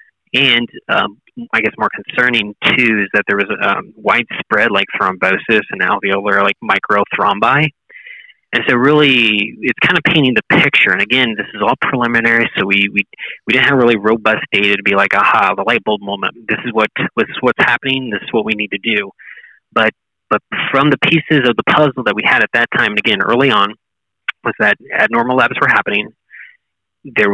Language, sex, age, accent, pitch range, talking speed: English, male, 20-39, American, 100-125 Hz, 200 wpm